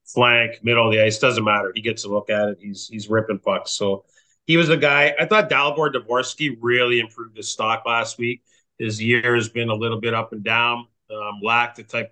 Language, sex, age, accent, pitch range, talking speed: English, male, 30-49, American, 110-125 Hz, 230 wpm